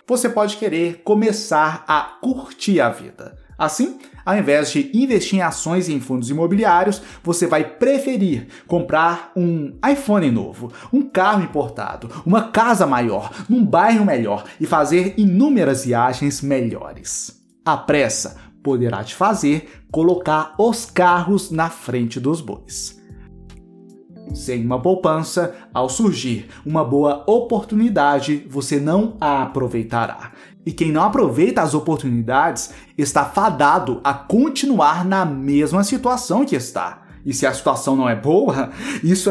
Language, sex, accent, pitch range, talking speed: Portuguese, male, Brazilian, 140-210 Hz, 135 wpm